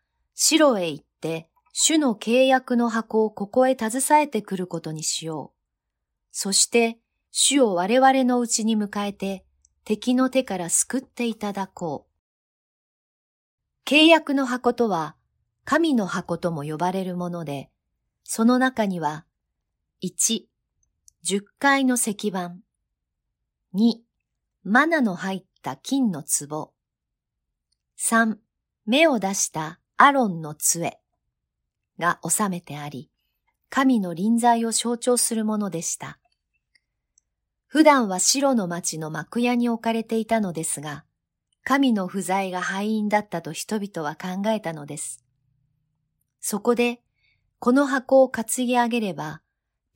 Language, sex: Japanese, female